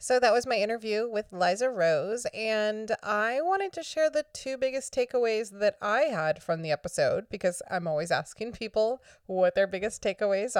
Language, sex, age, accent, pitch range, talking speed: English, female, 30-49, American, 175-220 Hz, 180 wpm